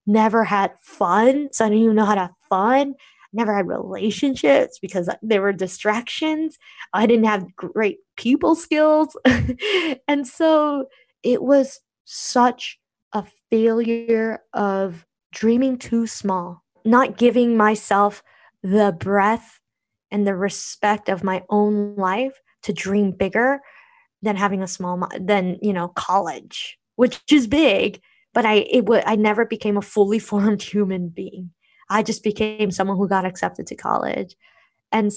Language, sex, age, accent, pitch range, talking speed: English, female, 10-29, American, 205-250 Hz, 145 wpm